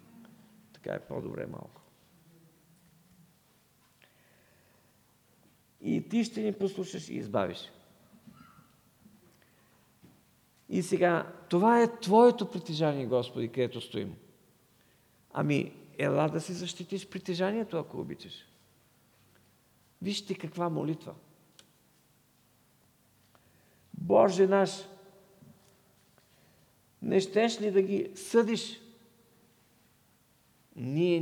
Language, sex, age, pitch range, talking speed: English, male, 50-69, 130-195 Hz, 75 wpm